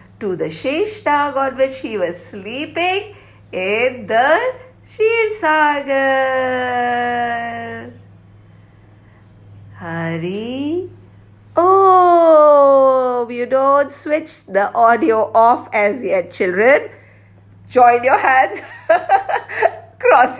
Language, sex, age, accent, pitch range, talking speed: English, female, 50-69, Indian, 200-305 Hz, 80 wpm